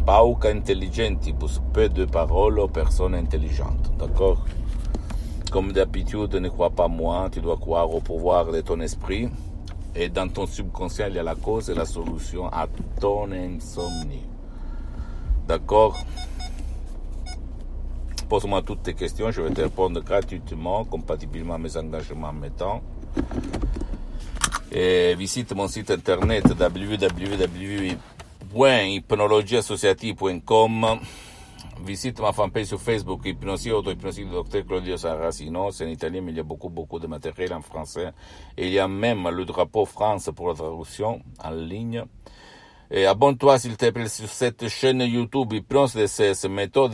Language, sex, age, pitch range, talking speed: Italian, male, 60-79, 80-105 Hz, 145 wpm